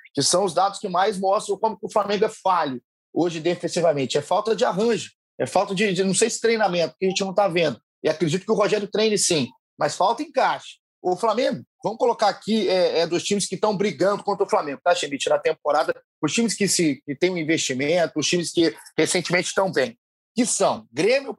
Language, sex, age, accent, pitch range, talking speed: Portuguese, male, 30-49, Brazilian, 165-225 Hz, 220 wpm